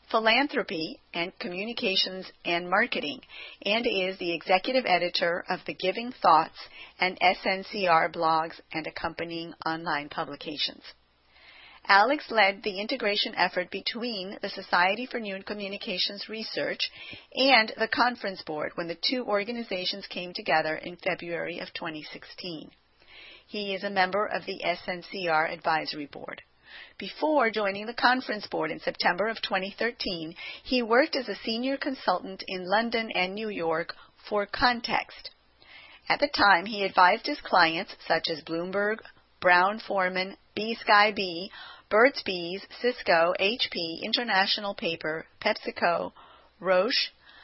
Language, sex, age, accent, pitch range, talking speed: English, female, 40-59, American, 175-230 Hz, 125 wpm